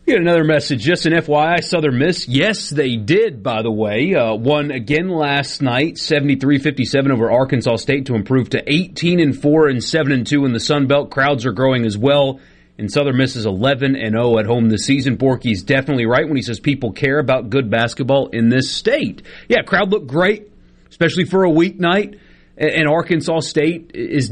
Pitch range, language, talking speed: 115-160 Hz, English, 185 wpm